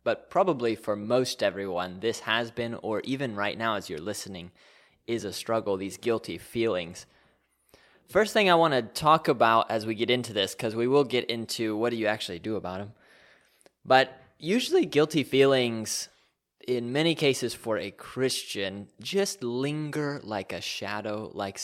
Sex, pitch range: male, 105-140 Hz